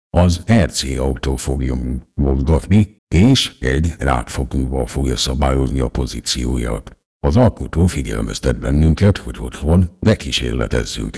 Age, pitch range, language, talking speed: 60-79, 65-80 Hz, Hungarian, 100 wpm